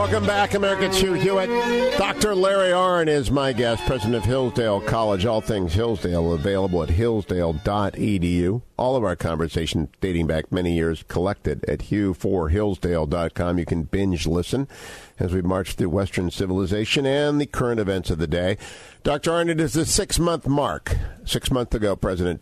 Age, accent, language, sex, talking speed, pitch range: 50-69, American, English, male, 165 wpm, 85-115 Hz